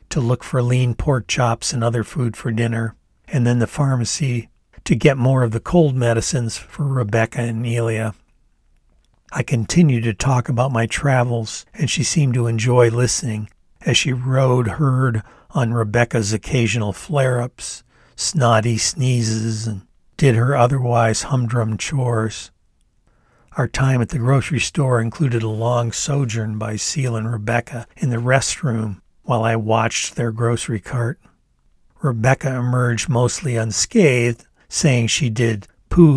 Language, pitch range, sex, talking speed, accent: English, 115-135 Hz, male, 145 wpm, American